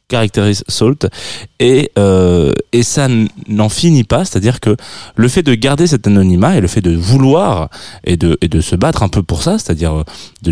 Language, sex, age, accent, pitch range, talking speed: French, male, 20-39, French, 100-135 Hz, 190 wpm